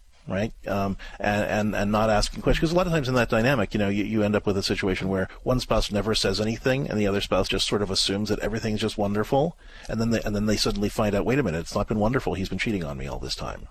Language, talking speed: English, 295 wpm